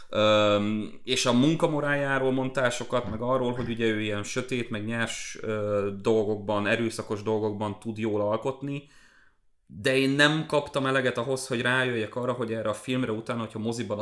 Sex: male